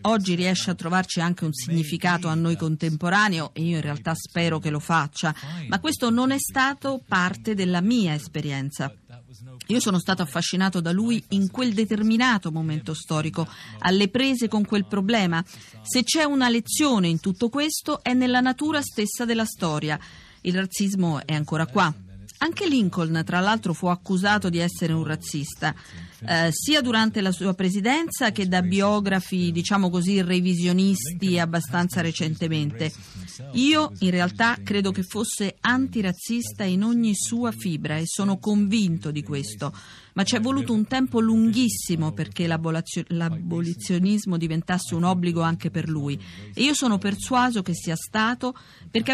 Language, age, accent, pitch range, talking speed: Italian, 40-59, native, 165-225 Hz, 150 wpm